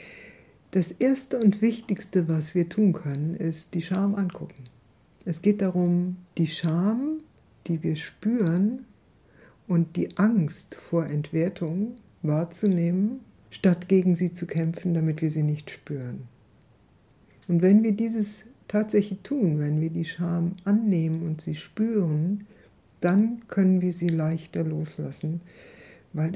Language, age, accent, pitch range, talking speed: German, 60-79, German, 150-190 Hz, 130 wpm